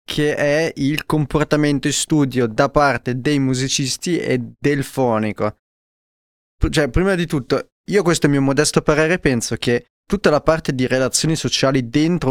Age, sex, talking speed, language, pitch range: 20-39, male, 165 wpm, Italian, 125-155 Hz